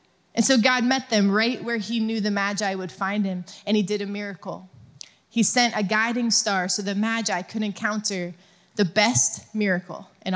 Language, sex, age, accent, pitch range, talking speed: English, female, 20-39, American, 195-245 Hz, 190 wpm